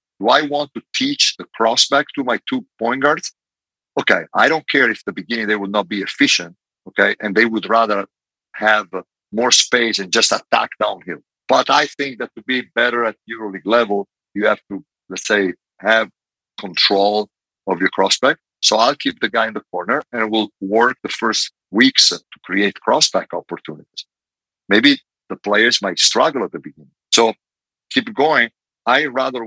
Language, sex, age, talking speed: English, male, 50-69, 180 wpm